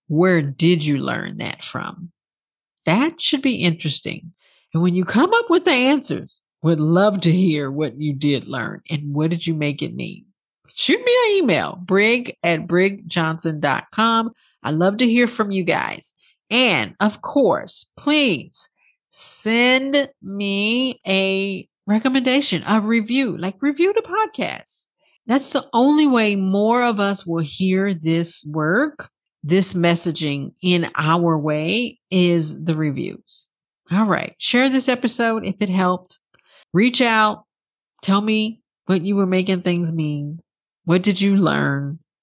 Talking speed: 145 wpm